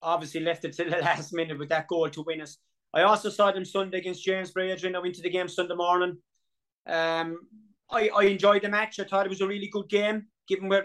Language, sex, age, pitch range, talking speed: English, male, 30-49, 165-185 Hz, 245 wpm